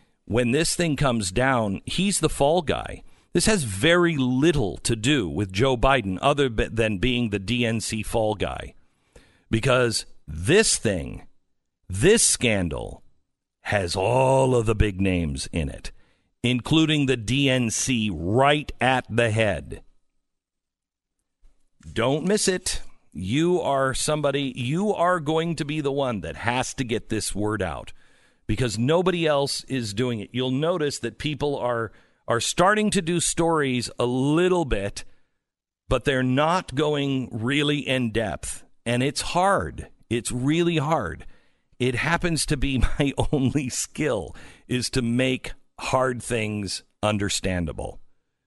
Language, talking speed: English, 135 wpm